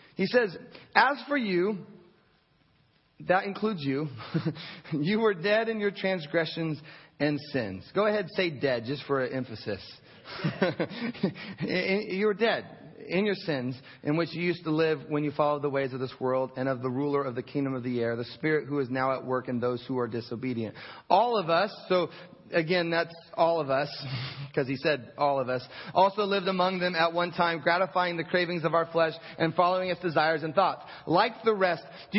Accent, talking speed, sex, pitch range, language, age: American, 195 wpm, male, 145-195 Hz, English, 30-49